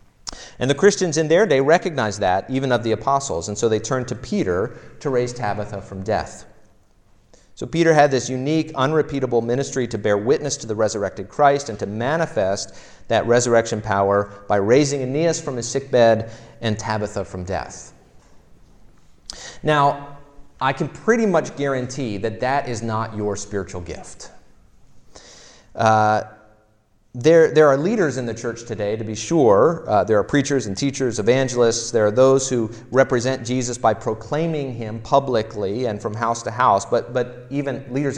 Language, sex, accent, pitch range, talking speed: English, male, American, 110-140 Hz, 165 wpm